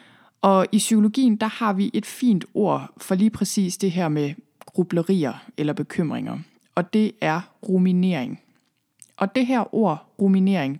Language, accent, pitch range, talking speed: Danish, native, 170-215 Hz, 150 wpm